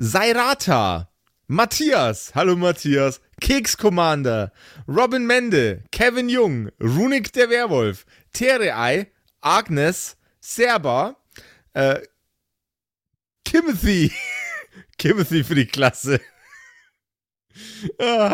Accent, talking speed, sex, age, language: German, 80 wpm, male, 30-49, German